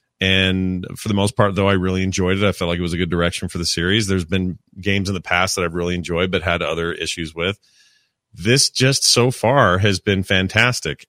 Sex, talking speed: male, 235 wpm